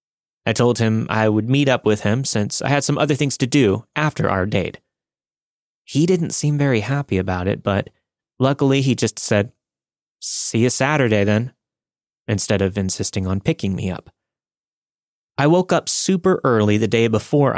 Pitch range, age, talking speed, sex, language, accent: 105-145 Hz, 30-49, 175 wpm, male, English, American